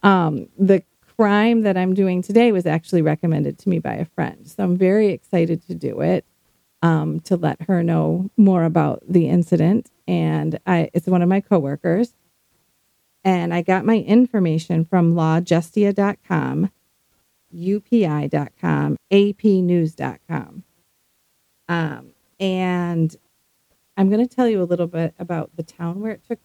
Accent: American